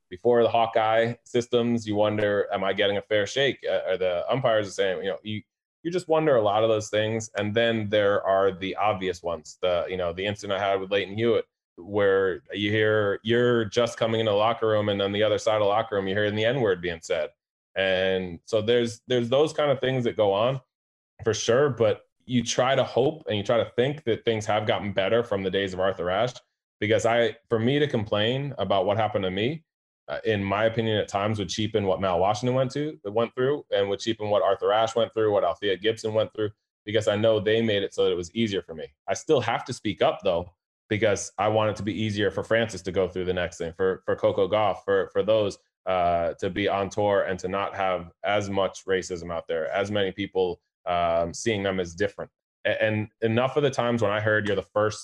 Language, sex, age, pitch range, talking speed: English, male, 20-39, 100-120 Hz, 240 wpm